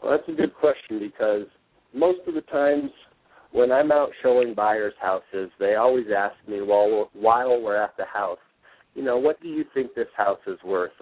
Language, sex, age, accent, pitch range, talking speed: English, male, 40-59, American, 105-145 Hz, 195 wpm